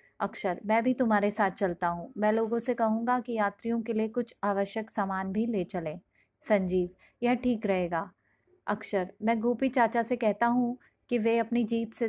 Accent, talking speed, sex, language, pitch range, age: native, 185 wpm, female, Hindi, 195-230 Hz, 30-49